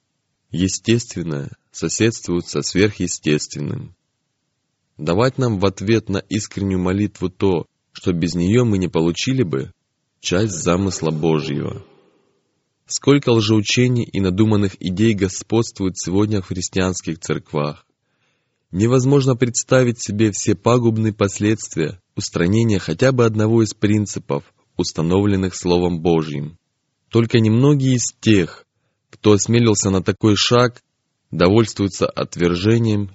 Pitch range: 90-115 Hz